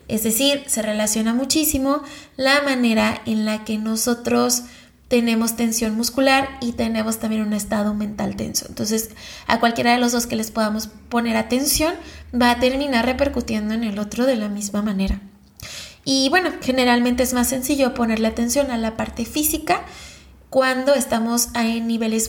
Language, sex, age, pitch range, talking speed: Spanish, female, 20-39, 225-260 Hz, 160 wpm